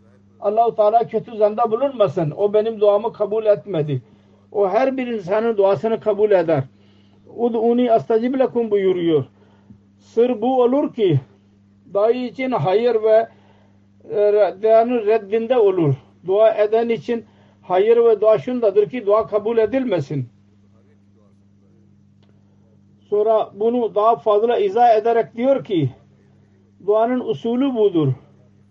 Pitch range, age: 155-235 Hz, 50-69